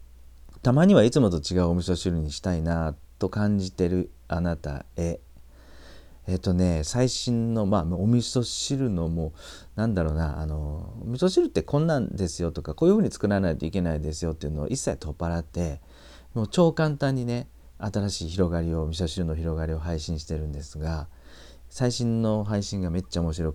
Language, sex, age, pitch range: Japanese, male, 40-59, 75-100 Hz